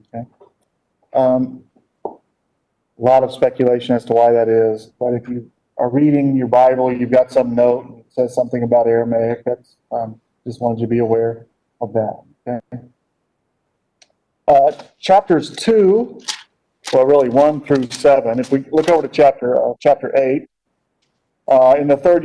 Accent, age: American, 40-59